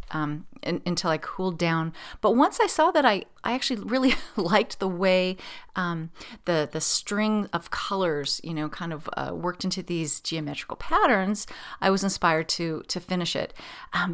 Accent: American